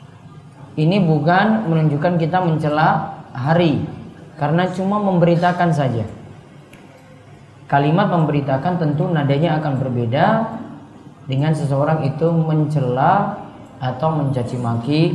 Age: 20-39